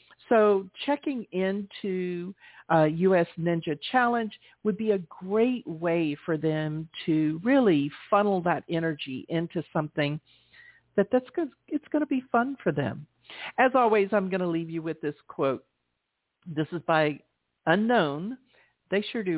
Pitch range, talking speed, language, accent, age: 155-215 Hz, 150 wpm, English, American, 50-69